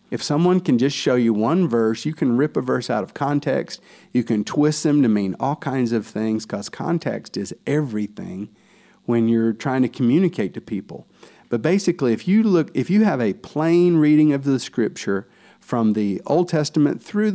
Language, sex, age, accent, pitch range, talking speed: English, male, 50-69, American, 110-140 Hz, 195 wpm